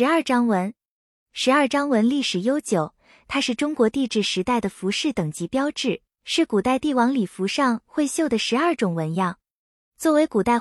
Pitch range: 195-280 Hz